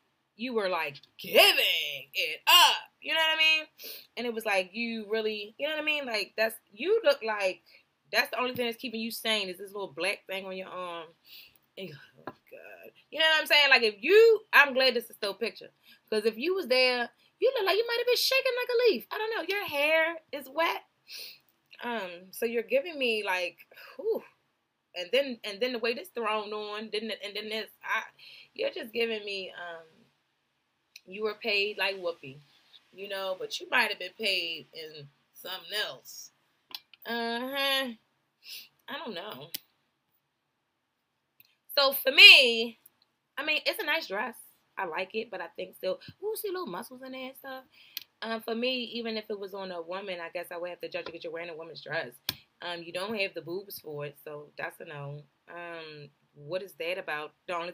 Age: 20-39